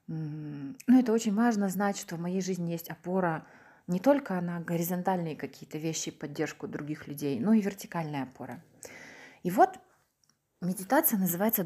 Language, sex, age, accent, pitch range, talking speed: Ukrainian, female, 20-39, native, 175-220 Hz, 145 wpm